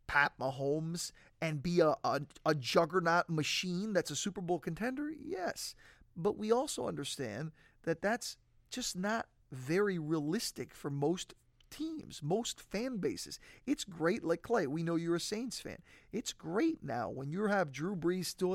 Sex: male